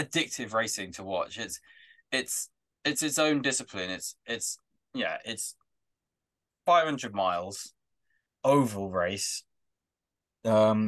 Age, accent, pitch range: 20-39, British, 95-130 Hz